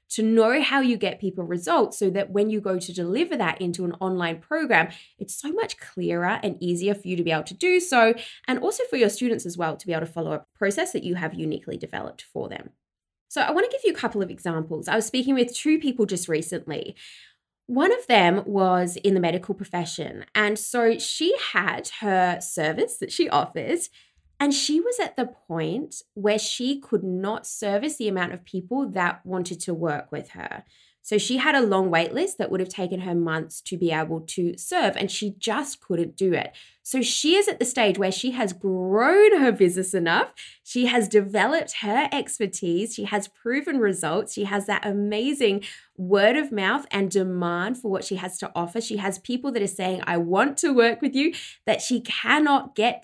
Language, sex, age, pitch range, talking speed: English, female, 20-39, 185-255 Hz, 210 wpm